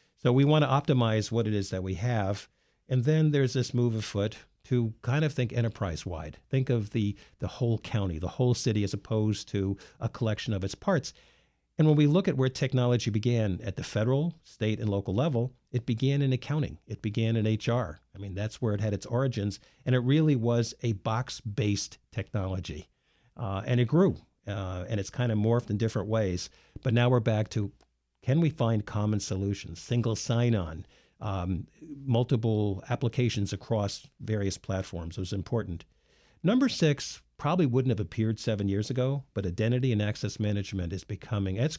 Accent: American